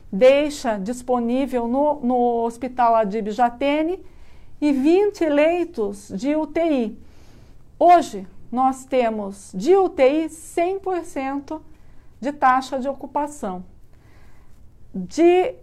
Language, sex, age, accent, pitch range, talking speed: Portuguese, female, 50-69, Brazilian, 250-310 Hz, 90 wpm